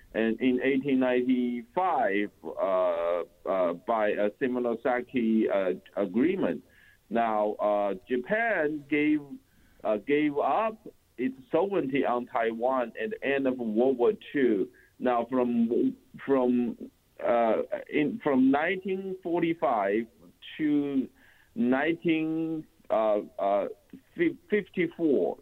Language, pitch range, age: English, 120-155 Hz, 50-69